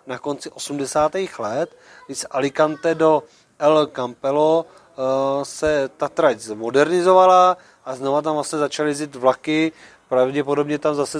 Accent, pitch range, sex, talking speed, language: native, 140-160 Hz, male, 135 wpm, Czech